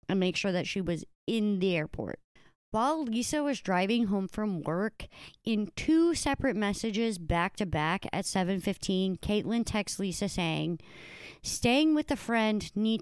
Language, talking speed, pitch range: English, 160 wpm, 175-220 Hz